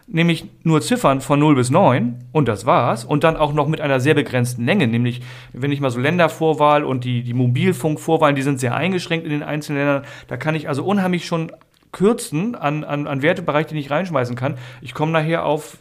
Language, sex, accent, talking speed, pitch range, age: German, male, German, 215 wpm, 125-155 Hz, 40-59